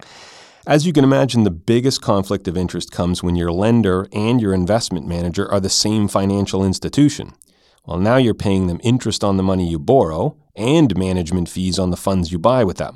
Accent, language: American, English